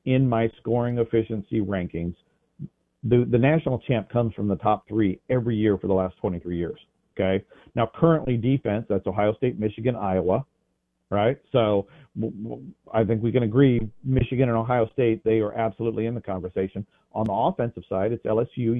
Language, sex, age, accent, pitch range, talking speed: English, male, 40-59, American, 100-125 Hz, 170 wpm